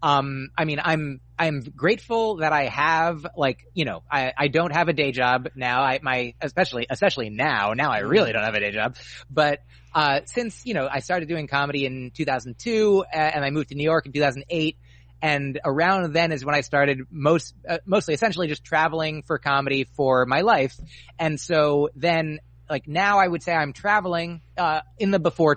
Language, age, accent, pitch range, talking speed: English, 30-49, American, 135-170 Hz, 195 wpm